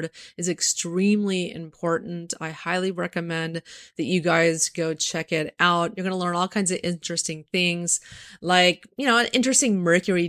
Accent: American